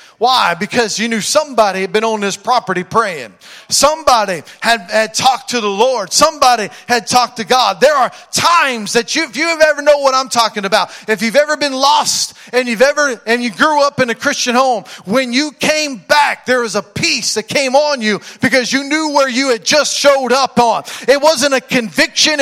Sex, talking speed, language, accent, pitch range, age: male, 210 wpm, English, American, 205-270 Hz, 40-59